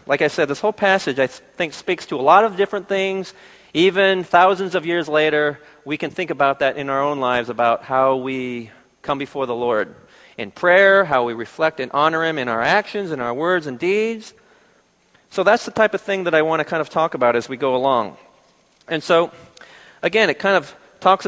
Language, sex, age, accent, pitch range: Korean, male, 40-59, American, 140-200 Hz